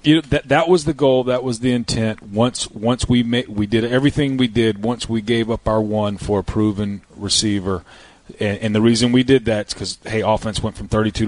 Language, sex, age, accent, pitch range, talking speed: English, male, 30-49, American, 100-120 Hz, 240 wpm